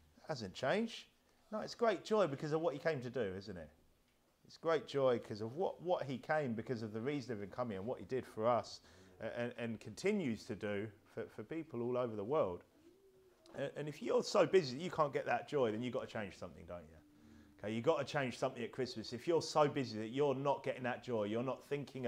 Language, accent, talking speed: English, British, 240 wpm